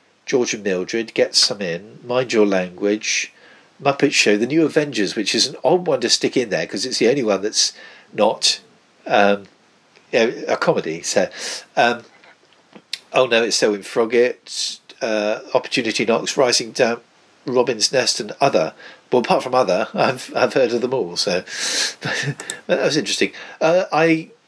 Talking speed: 160 wpm